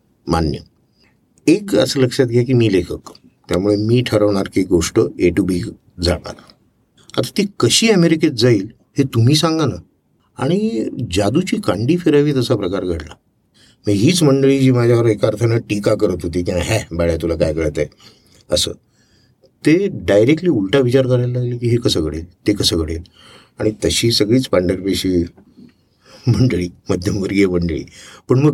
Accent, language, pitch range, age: native, Marathi, 95-130 Hz, 50-69